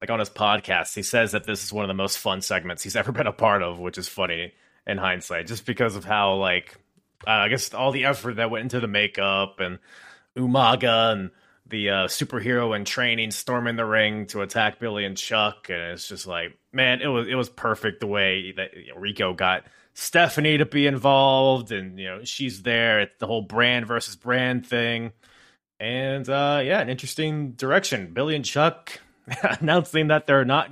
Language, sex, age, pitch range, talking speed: English, male, 20-39, 105-150 Hz, 195 wpm